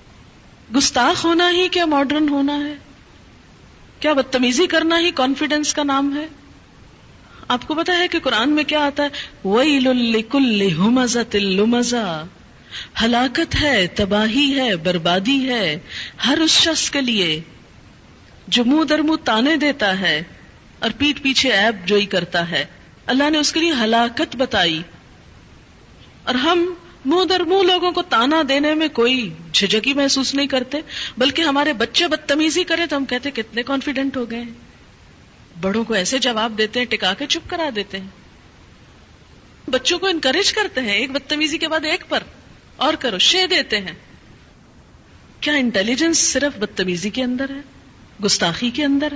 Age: 40-59